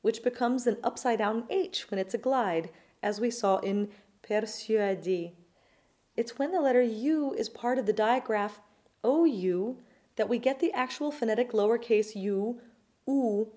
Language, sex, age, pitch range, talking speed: English, female, 30-49, 210-265 Hz, 150 wpm